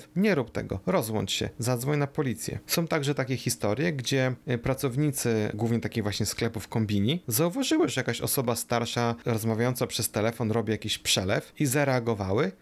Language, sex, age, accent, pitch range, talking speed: Polish, male, 30-49, native, 105-130 Hz, 150 wpm